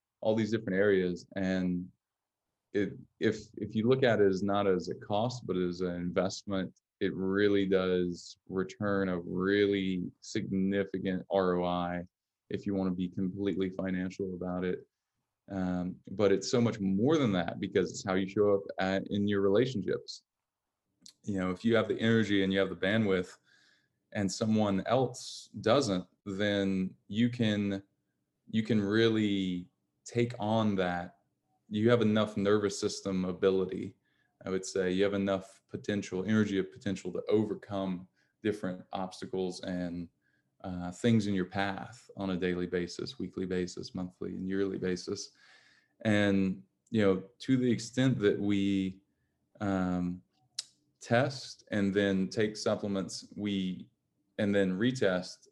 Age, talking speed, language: 20-39, 145 wpm, English